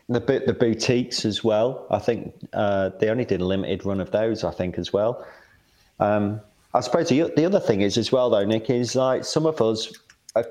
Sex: male